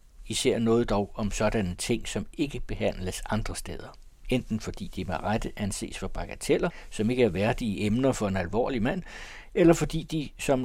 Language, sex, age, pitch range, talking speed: Danish, male, 60-79, 100-130 Hz, 180 wpm